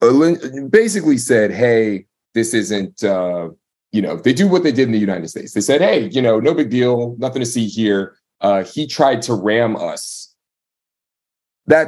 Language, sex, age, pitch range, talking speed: English, male, 30-49, 90-120 Hz, 180 wpm